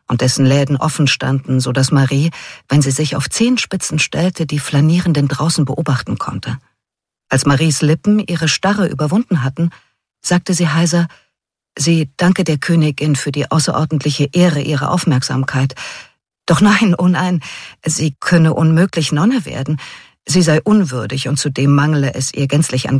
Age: 50-69